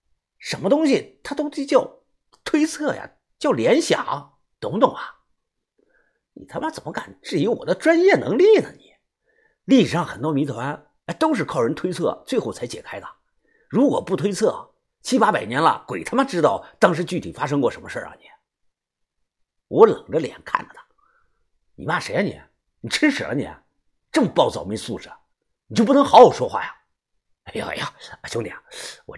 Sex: male